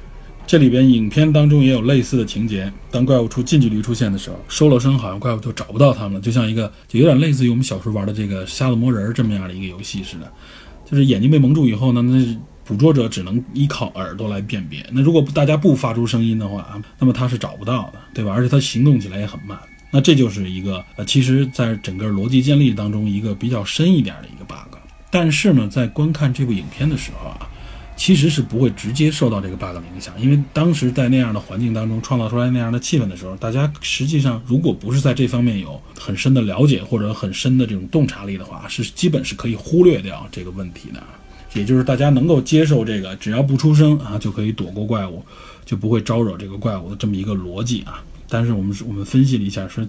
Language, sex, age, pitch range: Chinese, male, 20-39, 100-135 Hz